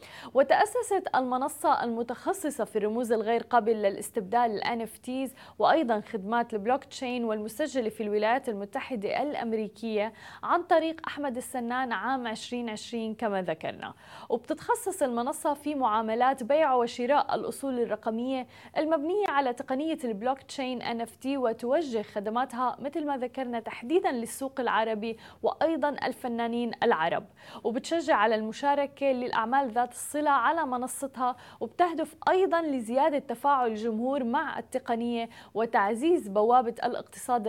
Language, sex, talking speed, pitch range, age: Arabic, female, 110 wpm, 230-290 Hz, 20-39